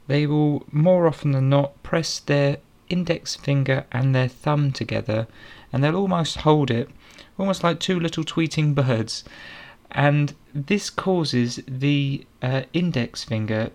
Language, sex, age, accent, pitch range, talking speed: English, male, 30-49, British, 120-150 Hz, 140 wpm